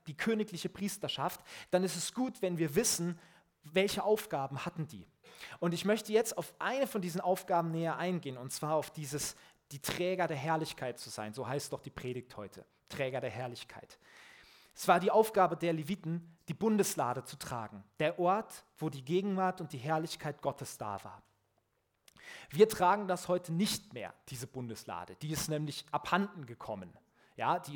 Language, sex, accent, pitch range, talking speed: German, male, German, 150-215 Hz, 175 wpm